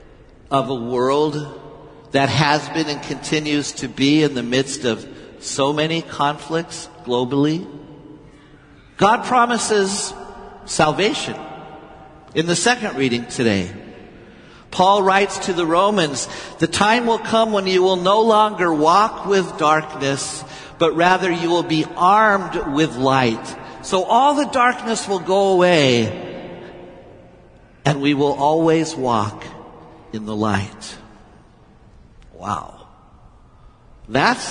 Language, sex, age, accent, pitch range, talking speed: English, male, 50-69, American, 140-190 Hz, 120 wpm